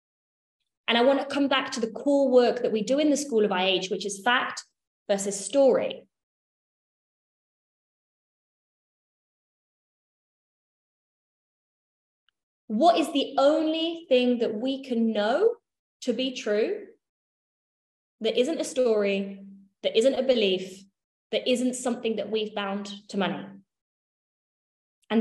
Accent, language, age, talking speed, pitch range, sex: British, English, 20-39, 125 wpm, 210-265 Hz, female